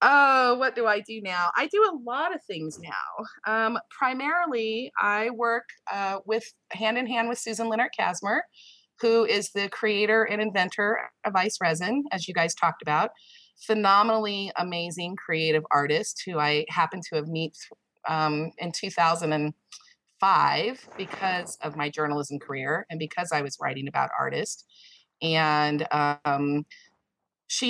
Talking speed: 145 wpm